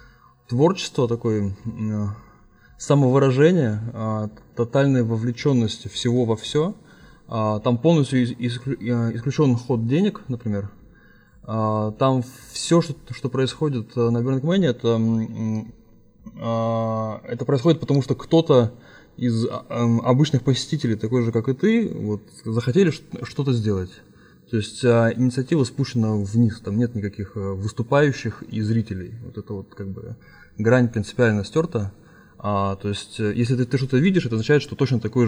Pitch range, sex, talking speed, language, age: 110-135 Hz, male, 115 wpm, Russian, 20-39